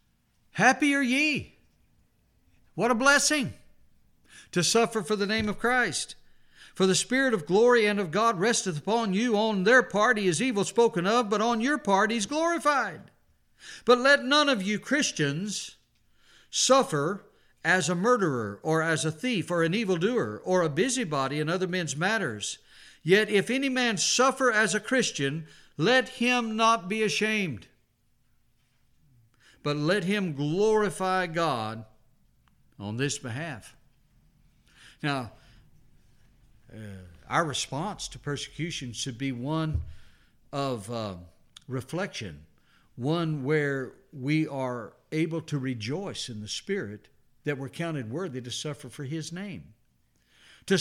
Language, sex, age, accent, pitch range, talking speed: English, male, 60-79, American, 135-220 Hz, 135 wpm